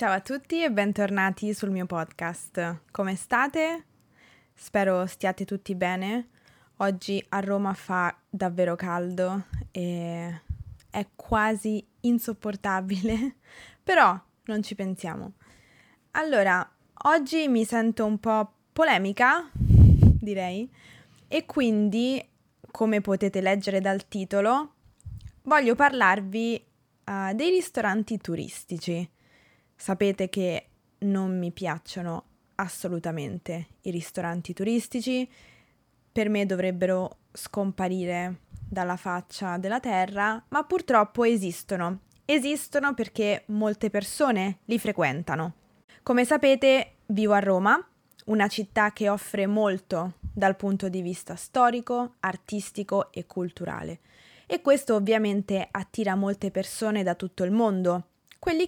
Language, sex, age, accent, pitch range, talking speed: Italian, female, 20-39, native, 180-225 Hz, 105 wpm